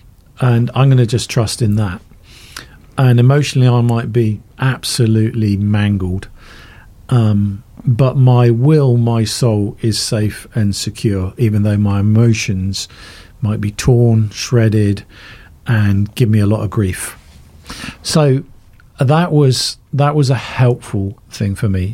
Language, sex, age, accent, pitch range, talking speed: English, male, 50-69, British, 100-130 Hz, 135 wpm